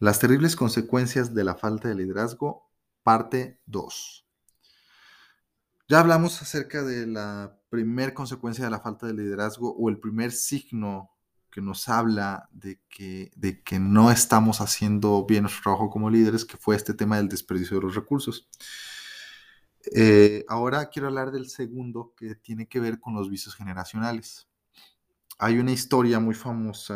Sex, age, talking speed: male, 30-49, 150 wpm